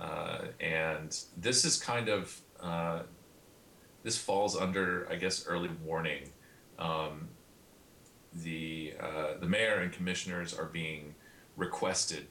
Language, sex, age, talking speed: English, male, 30-49, 115 wpm